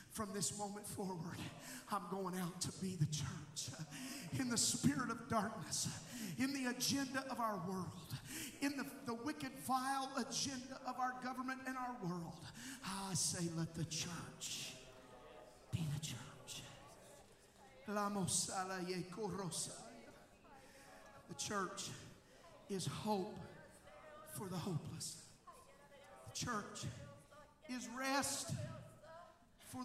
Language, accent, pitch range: English, American, 160-255 Hz